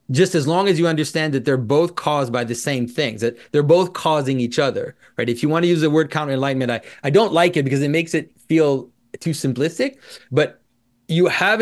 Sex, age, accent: male, 30-49, American